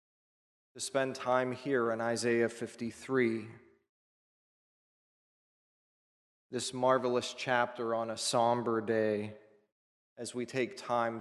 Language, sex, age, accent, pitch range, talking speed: English, male, 30-49, American, 110-130 Hz, 95 wpm